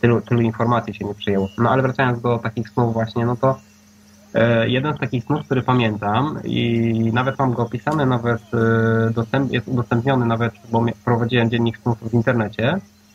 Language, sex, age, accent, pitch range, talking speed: Polish, male, 20-39, native, 110-135 Hz, 185 wpm